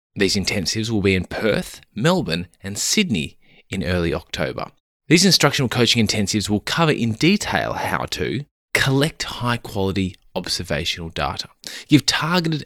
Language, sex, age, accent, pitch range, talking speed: English, male, 20-39, Australian, 95-135 Hz, 135 wpm